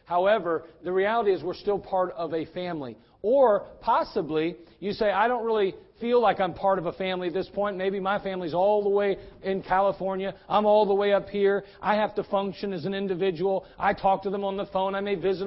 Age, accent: 40-59, American